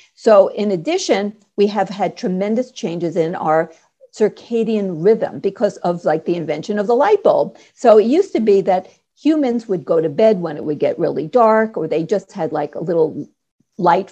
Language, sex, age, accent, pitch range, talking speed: English, female, 50-69, American, 180-220 Hz, 195 wpm